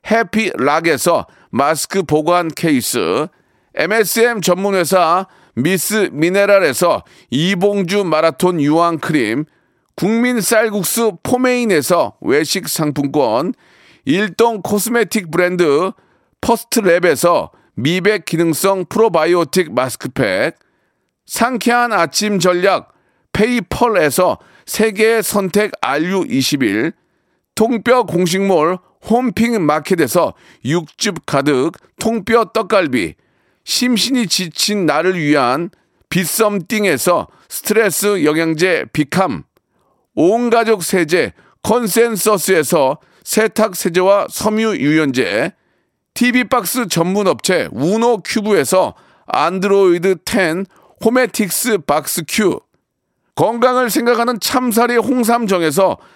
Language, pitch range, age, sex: Korean, 175-230 Hz, 40-59, male